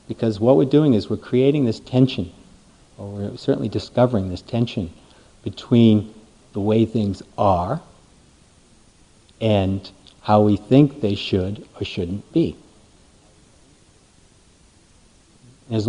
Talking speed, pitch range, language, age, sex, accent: 115 wpm, 100-125 Hz, English, 50-69, male, American